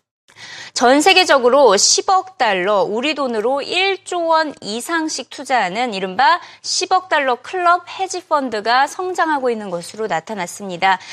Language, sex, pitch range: Korean, female, 215-330 Hz